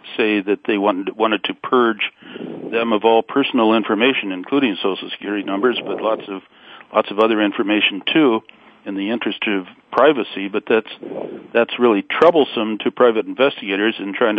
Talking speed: 165 wpm